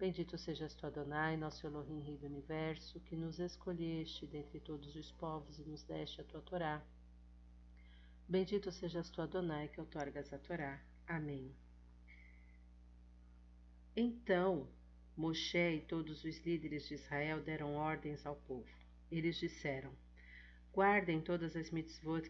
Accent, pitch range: Brazilian, 135-165 Hz